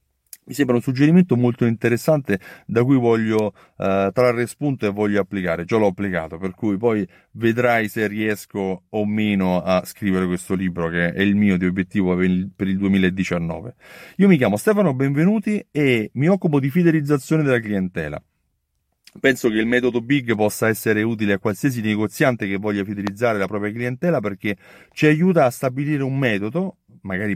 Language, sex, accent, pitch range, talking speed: Italian, male, native, 100-140 Hz, 165 wpm